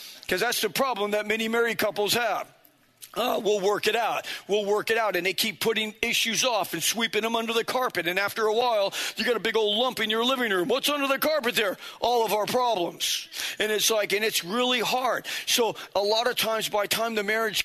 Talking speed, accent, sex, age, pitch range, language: 235 wpm, American, male, 40-59, 195-240 Hz, English